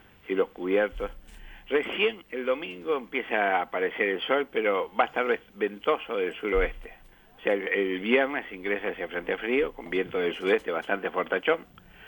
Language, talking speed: Spanish, 160 wpm